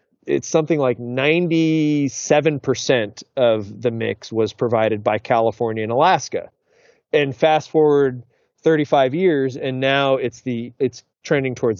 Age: 30-49